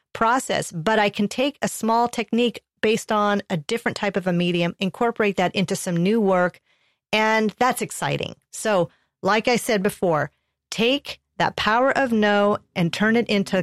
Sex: female